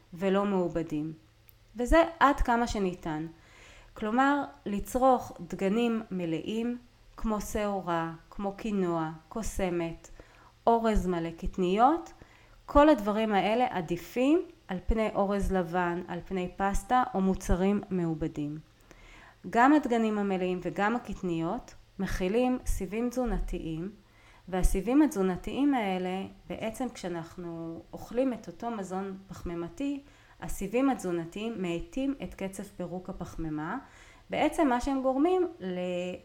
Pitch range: 170-235 Hz